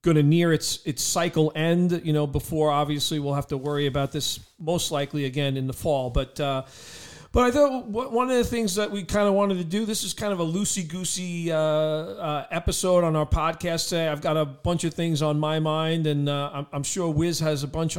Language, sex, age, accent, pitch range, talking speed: English, male, 40-59, American, 145-175 Hz, 240 wpm